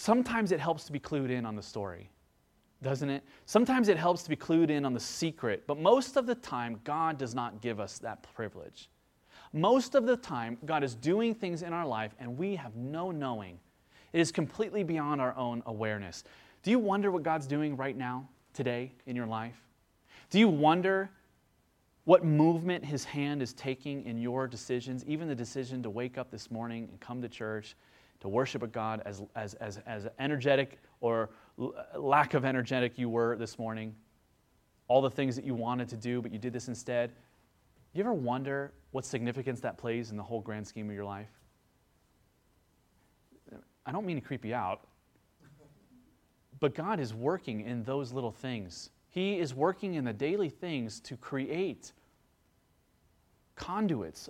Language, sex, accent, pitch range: English, male, American, 115-150 Hz